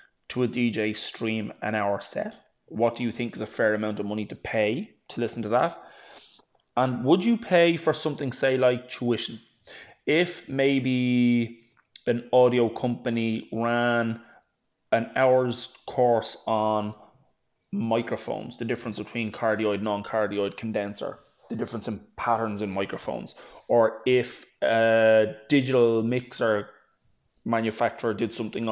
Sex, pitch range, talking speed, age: male, 110-130 Hz, 130 wpm, 20-39